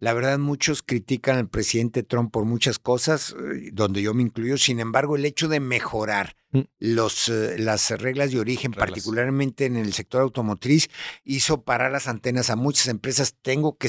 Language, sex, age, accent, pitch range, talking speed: Spanish, male, 60-79, Mexican, 105-145 Hz, 165 wpm